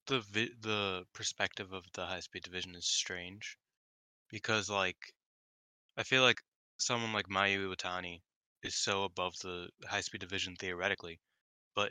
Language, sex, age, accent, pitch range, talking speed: English, male, 20-39, American, 90-110 Hz, 130 wpm